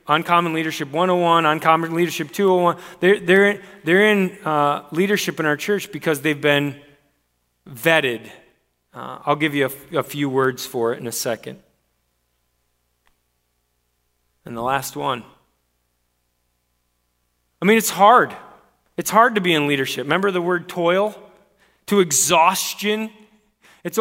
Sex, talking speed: male, 130 wpm